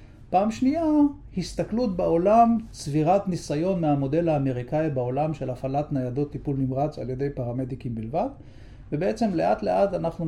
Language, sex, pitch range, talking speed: Hebrew, male, 135-180 Hz, 130 wpm